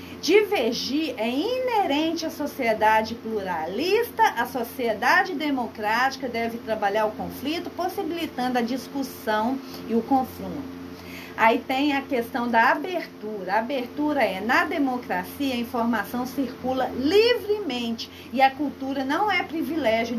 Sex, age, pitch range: female, 40-59, 225-310 Hz